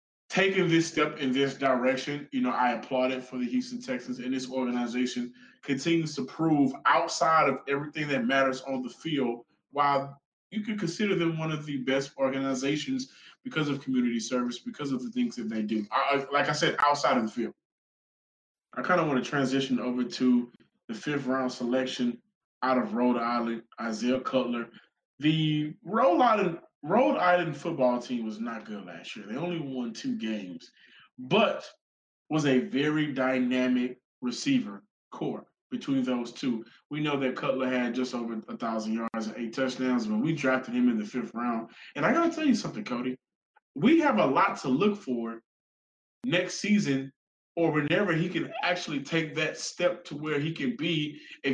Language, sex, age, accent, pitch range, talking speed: English, male, 20-39, American, 125-165 Hz, 180 wpm